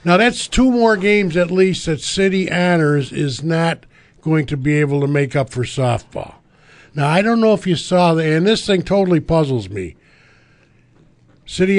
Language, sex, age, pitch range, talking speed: English, male, 50-69, 130-165 Hz, 180 wpm